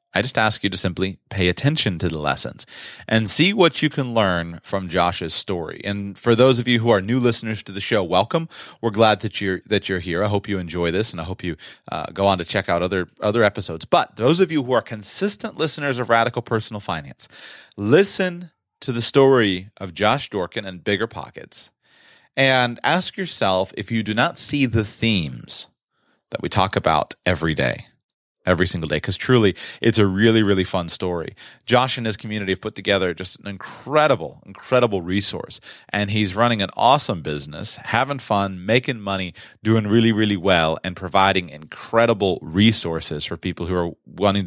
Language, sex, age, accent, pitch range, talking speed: English, male, 30-49, American, 95-120 Hz, 190 wpm